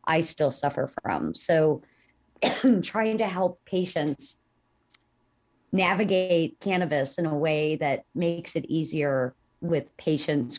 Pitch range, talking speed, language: 140-170 Hz, 115 wpm, English